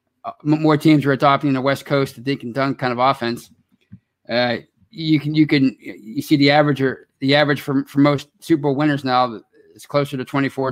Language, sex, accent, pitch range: English, male, American, 125-145 Hz